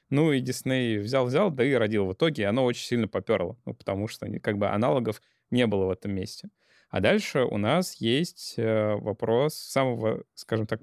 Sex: male